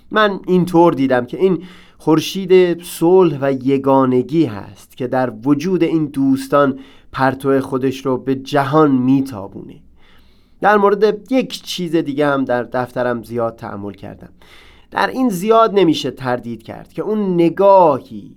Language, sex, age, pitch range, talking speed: Persian, male, 30-49, 135-175 Hz, 135 wpm